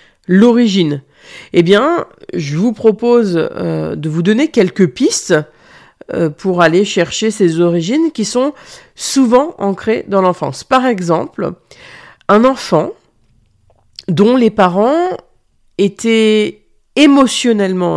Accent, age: French, 50-69